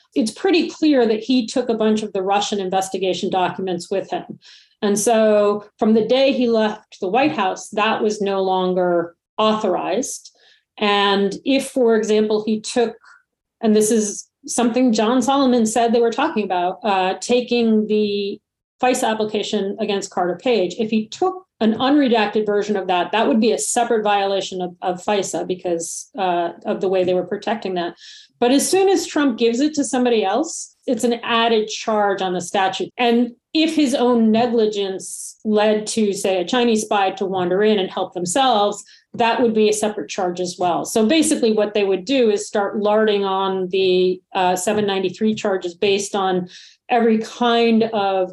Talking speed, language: 175 wpm, English